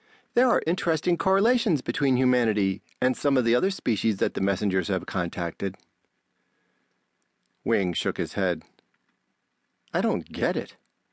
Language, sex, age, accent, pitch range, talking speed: English, male, 40-59, American, 95-150 Hz, 135 wpm